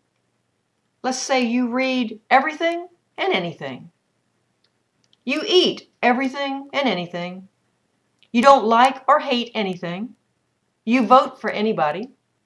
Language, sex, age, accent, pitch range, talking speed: English, female, 50-69, American, 185-260 Hz, 105 wpm